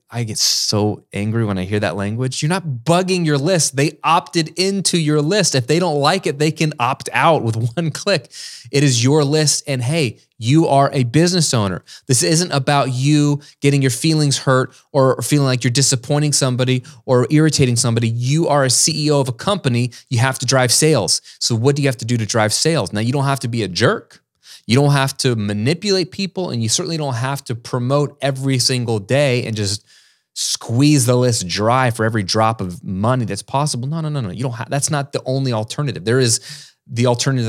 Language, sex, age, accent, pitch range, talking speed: English, male, 20-39, American, 115-145 Hz, 215 wpm